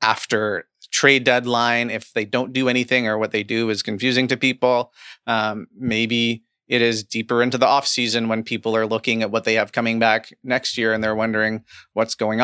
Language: English